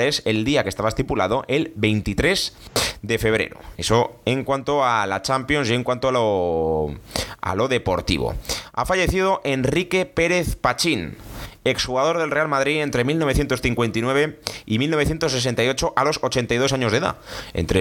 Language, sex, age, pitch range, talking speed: Spanish, male, 30-49, 110-140 Hz, 150 wpm